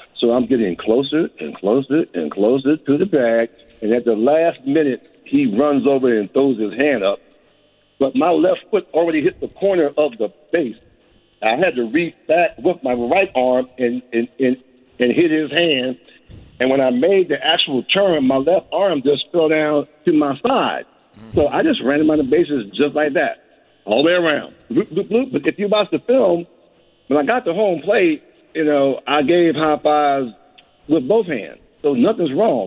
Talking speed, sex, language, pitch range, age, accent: 195 wpm, male, English, 130-180 Hz, 50-69, American